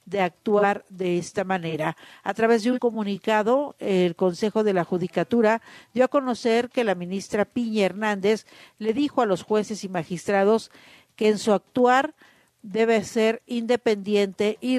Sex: female